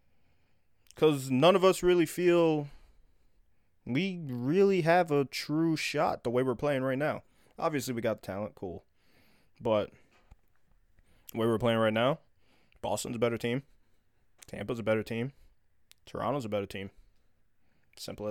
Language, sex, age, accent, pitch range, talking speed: English, male, 20-39, American, 105-135 Hz, 145 wpm